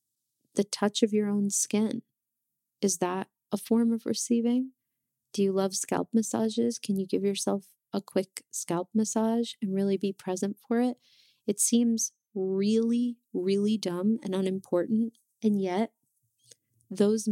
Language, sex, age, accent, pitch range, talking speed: English, female, 30-49, American, 190-220 Hz, 140 wpm